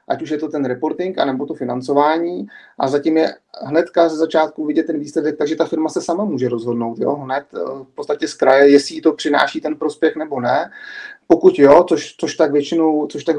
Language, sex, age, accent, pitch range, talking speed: Czech, male, 30-49, native, 145-175 Hz, 205 wpm